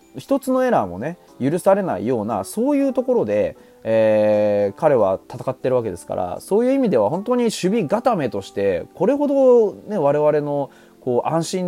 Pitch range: 110-185 Hz